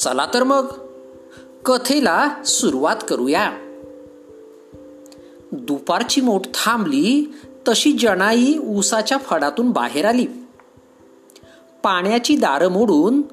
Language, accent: Marathi, native